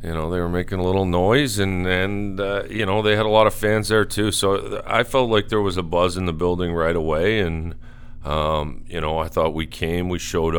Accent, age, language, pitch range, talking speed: American, 40-59, English, 80-90 Hz, 250 wpm